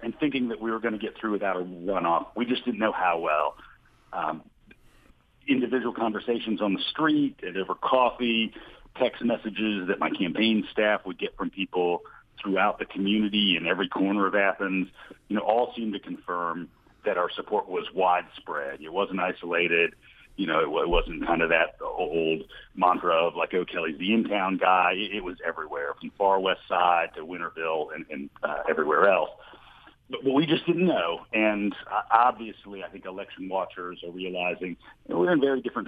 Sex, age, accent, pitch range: male, 50-69, American, 90-110 Hz